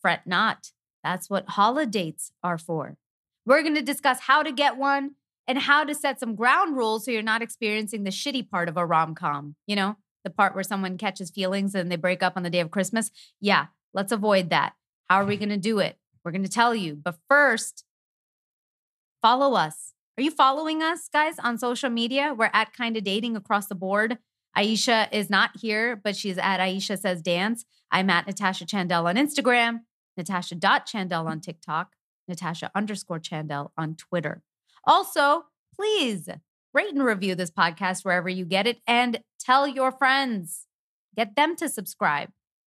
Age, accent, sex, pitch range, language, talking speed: 30-49, American, female, 185-265 Hz, English, 175 wpm